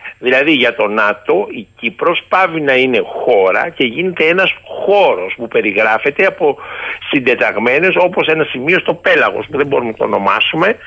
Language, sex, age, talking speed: Greek, male, 60-79, 160 wpm